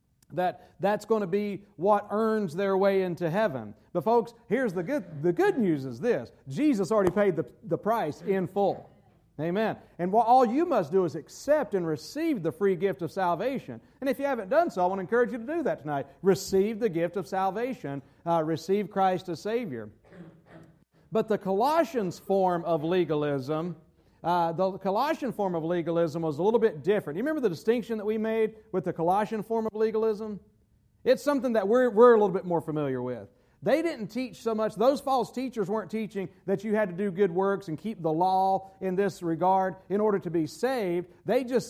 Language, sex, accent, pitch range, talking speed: English, male, American, 170-220 Hz, 205 wpm